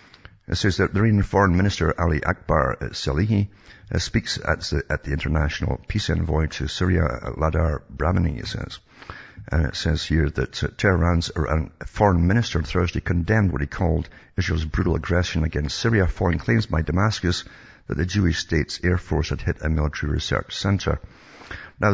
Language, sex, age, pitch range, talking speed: English, male, 60-79, 75-95 Hz, 165 wpm